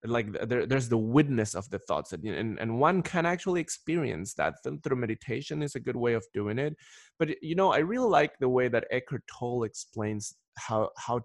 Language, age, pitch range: English, 20-39, 115-155 Hz